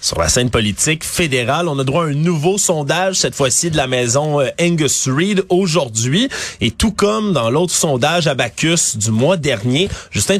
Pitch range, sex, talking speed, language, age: 125-170 Hz, male, 185 wpm, French, 30-49